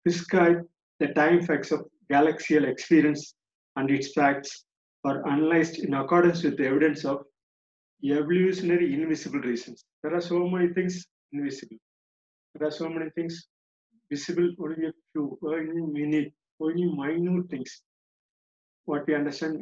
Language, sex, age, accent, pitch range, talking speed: Tamil, male, 50-69, native, 140-175 Hz, 140 wpm